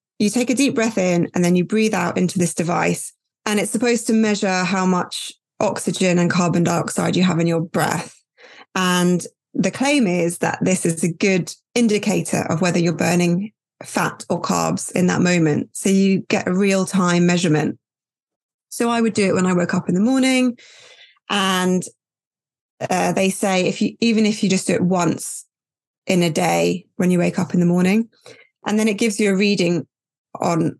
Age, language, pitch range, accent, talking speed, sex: 20-39, English, 175-210 Hz, British, 195 wpm, female